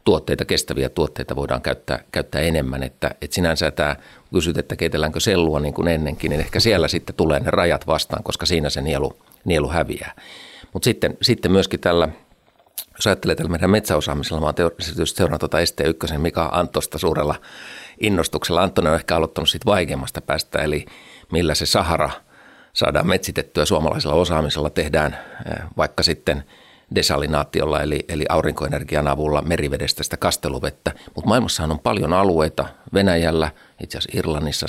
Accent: native